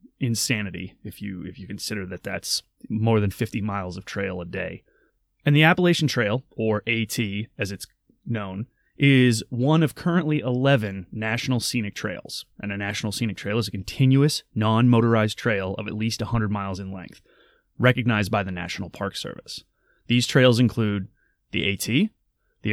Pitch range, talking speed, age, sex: 105-130 Hz, 165 wpm, 30-49, male